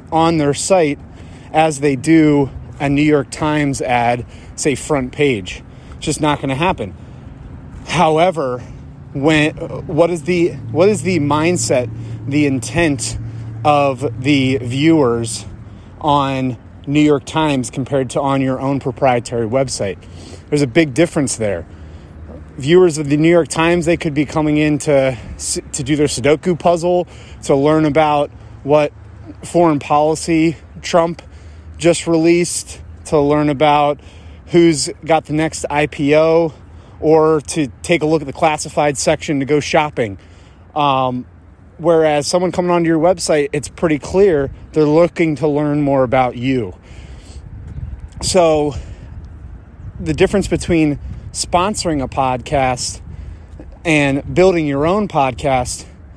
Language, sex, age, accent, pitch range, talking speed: English, male, 30-49, American, 115-160 Hz, 135 wpm